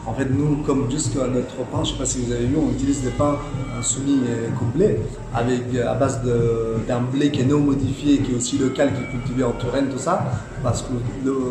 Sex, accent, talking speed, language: male, French, 240 wpm, French